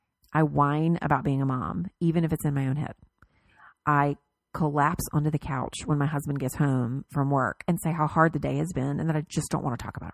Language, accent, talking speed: English, American, 245 wpm